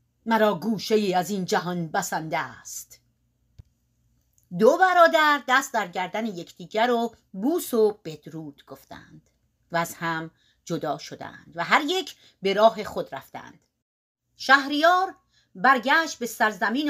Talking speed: 120 wpm